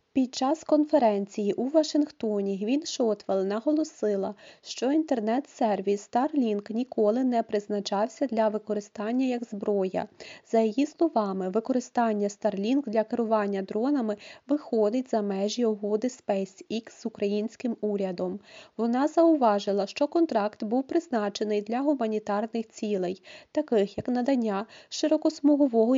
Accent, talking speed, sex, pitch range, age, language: native, 110 wpm, female, 210-270 Hz, 20-39, Ukrainian